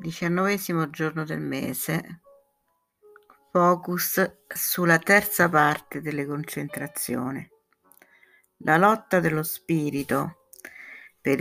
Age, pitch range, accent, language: 60-79, 140-175 Hz, native, Italian